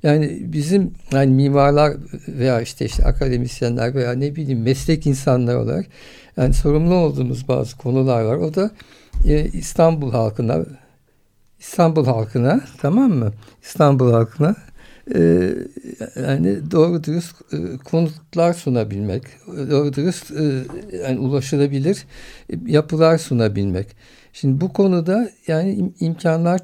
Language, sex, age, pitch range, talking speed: Turkish, male, 60-79, 130-165 Hz, 115 wpm